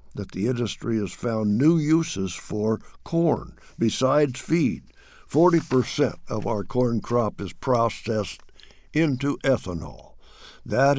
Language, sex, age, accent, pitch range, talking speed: English, male, 60-79, American, 105-140 Hz, 115 wpm